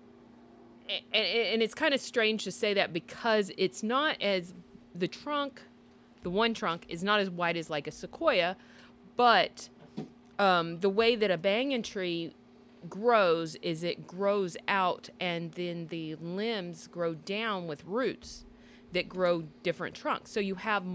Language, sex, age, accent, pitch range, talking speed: English, female, 40-59, American, 170-220 Hz, 150 wpm